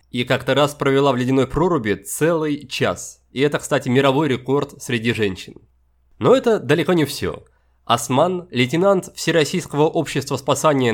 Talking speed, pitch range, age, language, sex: 145 wpm, 120-155 Hz, 20-39, Russian, male